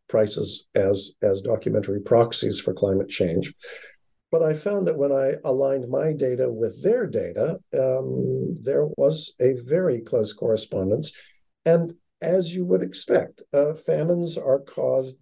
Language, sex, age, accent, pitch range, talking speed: English, male, 50-69, American, 115-170 Hz, 140 wpm